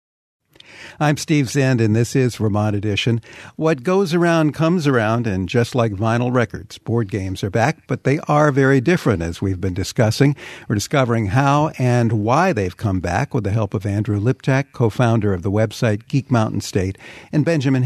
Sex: male